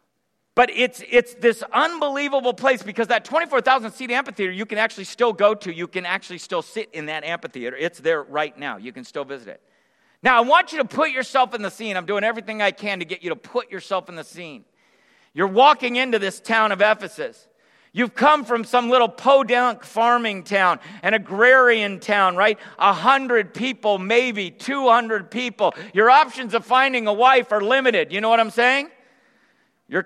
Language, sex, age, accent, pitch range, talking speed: English, male, 50-69, American, 195-255 Hz, 195 wpm